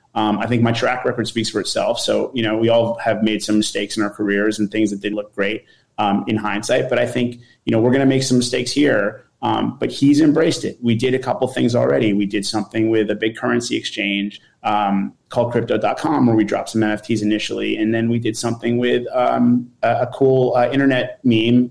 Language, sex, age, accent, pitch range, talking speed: English, male, 30-49, American, 110-125 Hz, 230 wpm